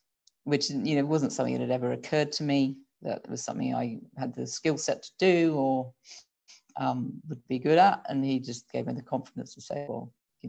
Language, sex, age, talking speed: English, female, 40-59, 215 wpm